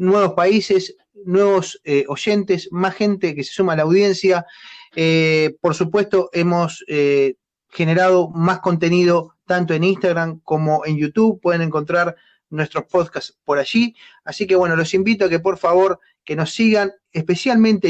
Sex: male